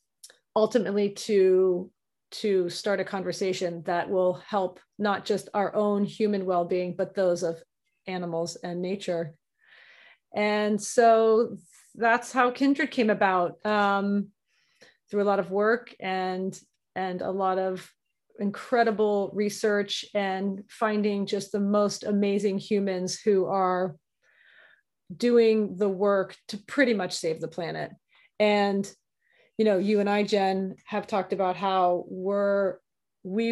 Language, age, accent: English, 30-49, American